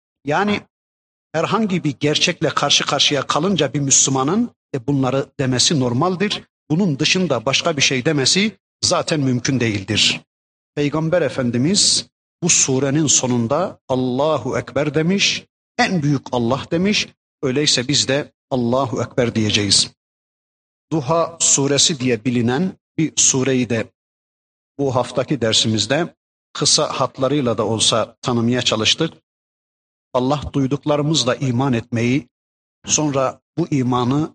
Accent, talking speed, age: native, 110 wpm, 50-69